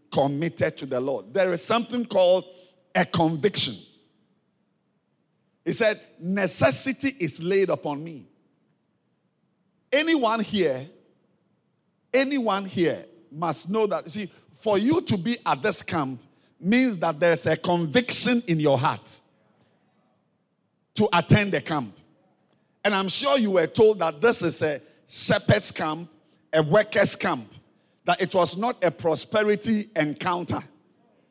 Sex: male